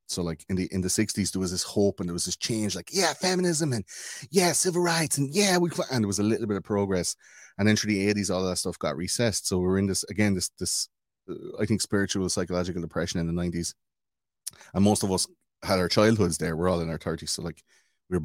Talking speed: 255 wpm